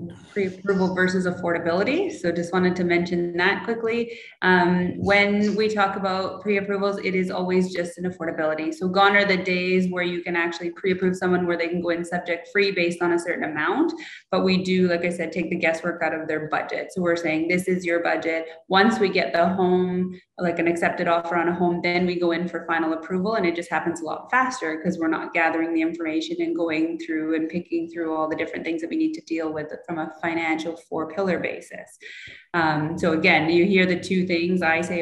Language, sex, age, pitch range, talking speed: English, female, 20-39, 170-195 Hz, 225 wpm